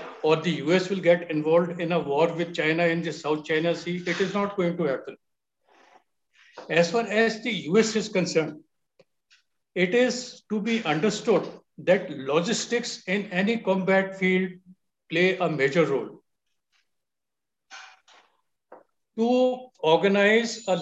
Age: 60-79